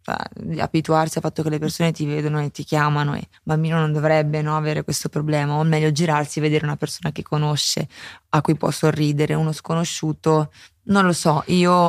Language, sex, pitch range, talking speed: English, female, 150-165 Hz, 195 wpm